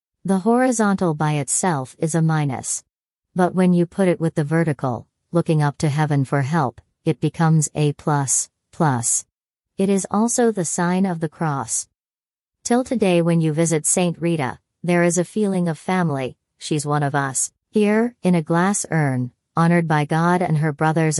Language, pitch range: English, 135-165 Hz